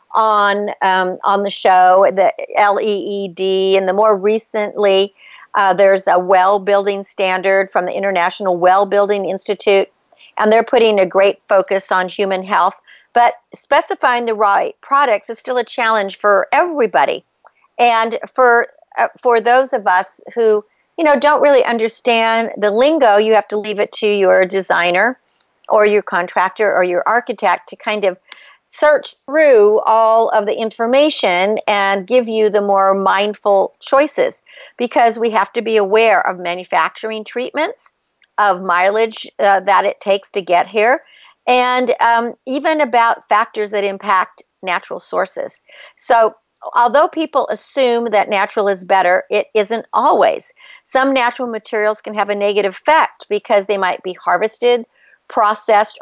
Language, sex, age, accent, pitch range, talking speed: English, female, 50-69, American, 195-235 Hz, 155 wpm